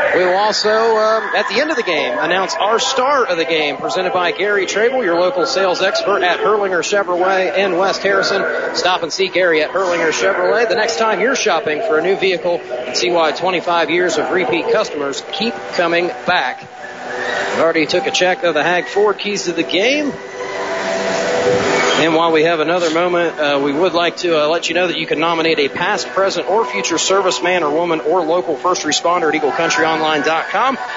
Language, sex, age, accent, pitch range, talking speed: English, male, 40-59, American, 165-215 Hz, 200 wpm